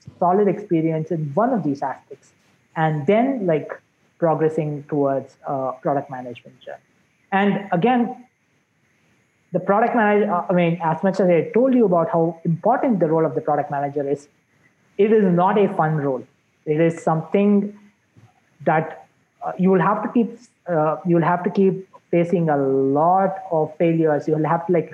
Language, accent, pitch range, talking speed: English, Indian, 150-180 Hz, 170 wpm